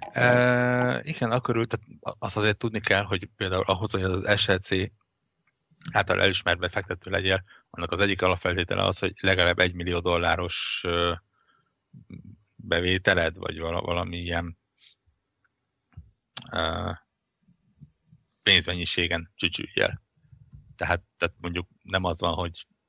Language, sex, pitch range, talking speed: Hungarian, male, 85-100 Hz, 100 wpm